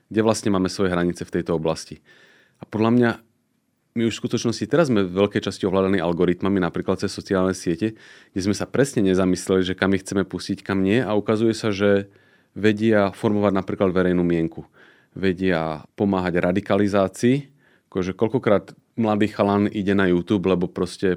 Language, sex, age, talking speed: Slovak, male, 30-49, 165 wpm